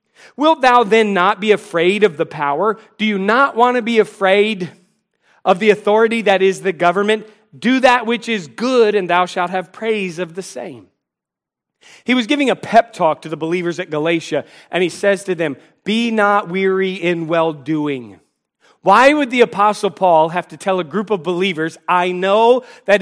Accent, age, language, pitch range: American, 40-59, English, 180-225 Hz